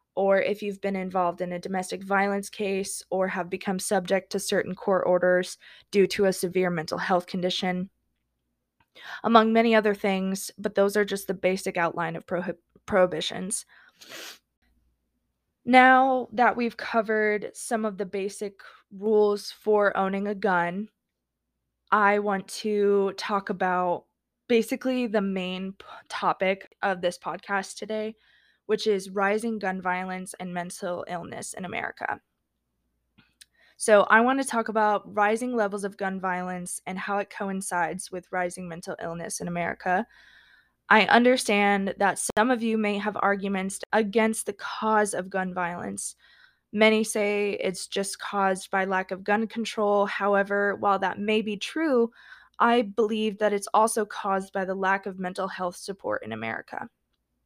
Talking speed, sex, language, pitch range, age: 145 wpm, female, English, 180-210 Hz, 20-39